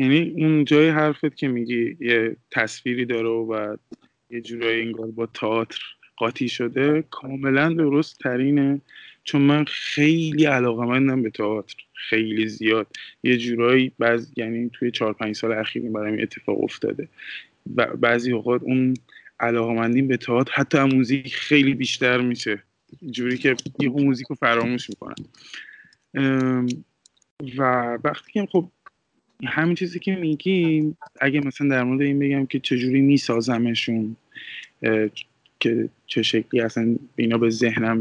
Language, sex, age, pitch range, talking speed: Persian, male, 20-39, 115-145 Hz, 130 wpm